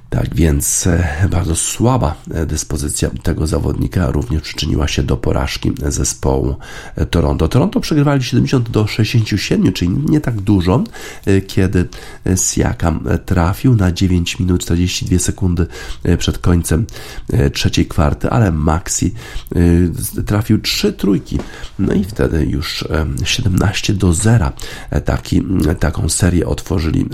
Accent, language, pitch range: native, Polish, 80-100 Hz